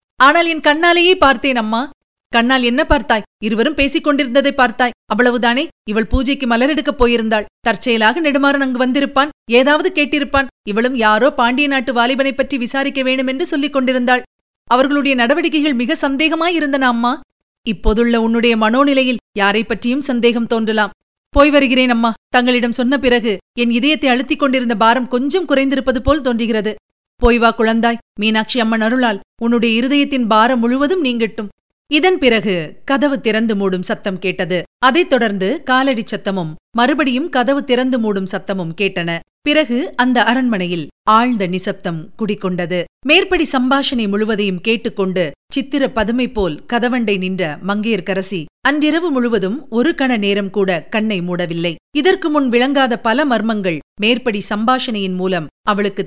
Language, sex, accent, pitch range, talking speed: Tamil, female, native, 210-275 Hz, 125 wpm